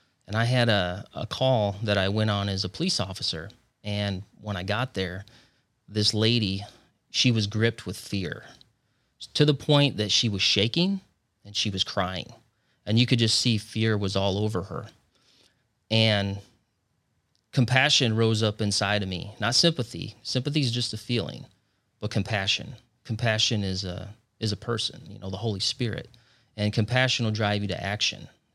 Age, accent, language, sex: 30-49, American, English, male